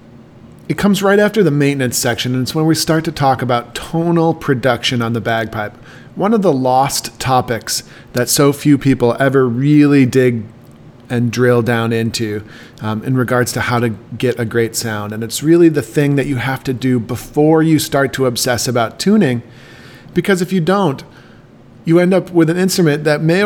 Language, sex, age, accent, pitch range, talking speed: English, male, 40-59, American, 120-155 Hz, 190 wpm